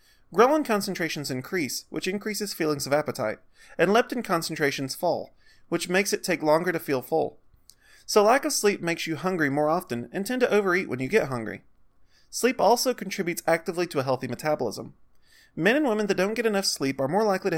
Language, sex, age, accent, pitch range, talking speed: English, male, 30-49, American, 140-205 Hz, 195 wpm